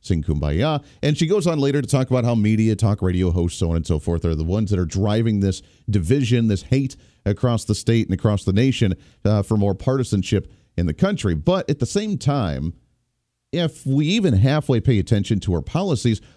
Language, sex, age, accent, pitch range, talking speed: English, male, 40-59, American, 105-140 Hz, 215 wpm